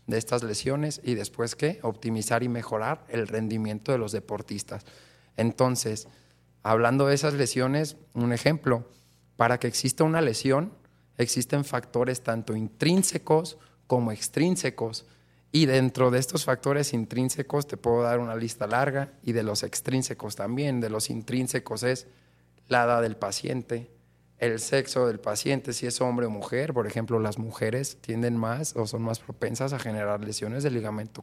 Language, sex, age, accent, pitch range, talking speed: Spanish, male, 30-49, Mexican, 105-130 Hz, 155 wpm